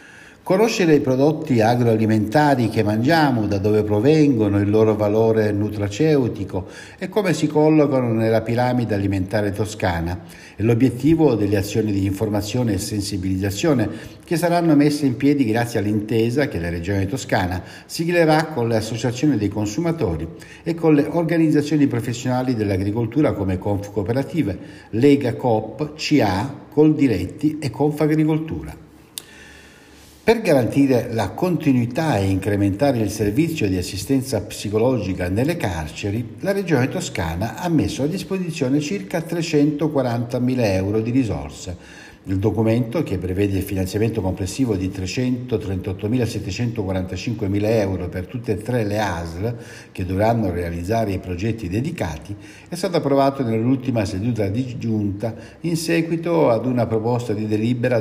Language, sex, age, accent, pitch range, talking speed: Italian, male, 60-79, native, 100-140 Hz, 125 wpm